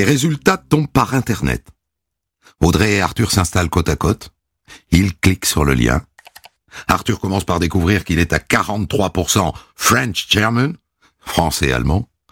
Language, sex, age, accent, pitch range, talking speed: French, male, 60-79, French, 80-115 Hz, 130 wpm